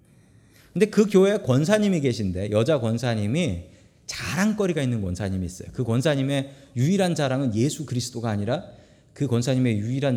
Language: Korean